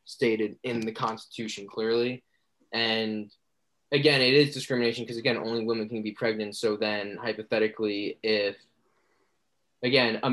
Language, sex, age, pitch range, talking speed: English, male, 20-39, 110-125 Hz, 135 wpm